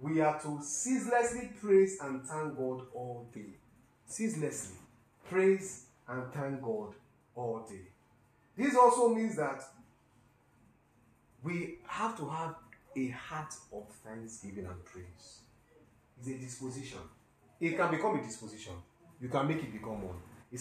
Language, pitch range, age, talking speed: English, 115-155 Hz, 40-59, 135 wpm